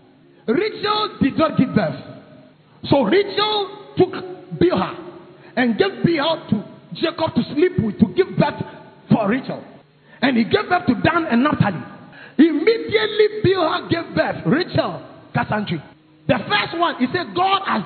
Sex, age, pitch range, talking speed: male, 40-59, 215-350 Hz, 145 wpm